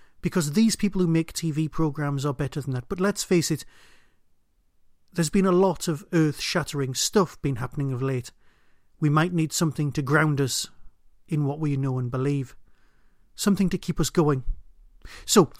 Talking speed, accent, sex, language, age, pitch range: 175 wpm, British, male, English, 40-59, 135-180 Hz